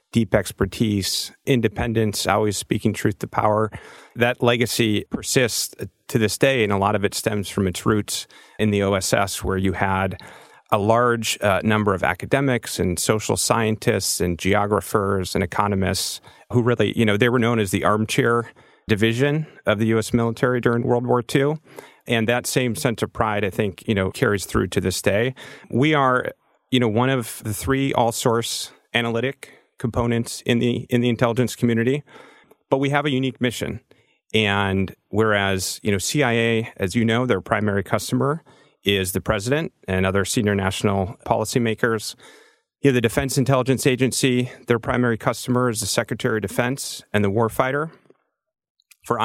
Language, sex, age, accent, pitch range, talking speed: English, male, 40-59, American, 105-125 Hz, 165 wpm